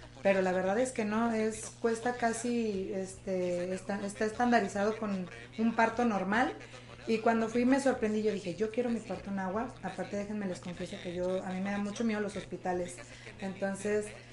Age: 30-49